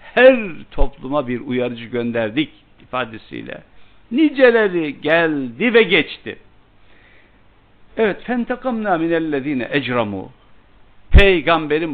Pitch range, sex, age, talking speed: 100-145 Hz, male, 60-79, 80 wpm